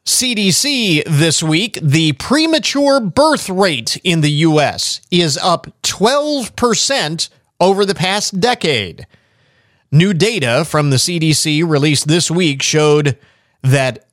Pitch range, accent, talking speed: 130-185 Hz, American, 115 wpm